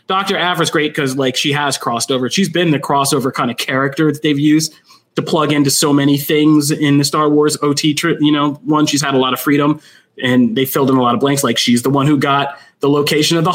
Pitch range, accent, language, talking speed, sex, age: 135-155 Hz, American, English, 255 wpm, male, 30-49